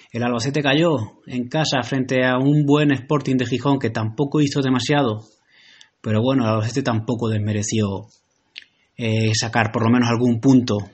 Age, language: 20-39, Spanish